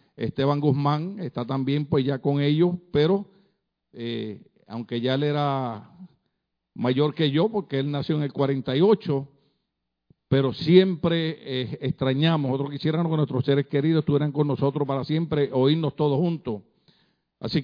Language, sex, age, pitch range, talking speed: Spanish, male, 50-69, 135-165 Hz, 145 wpm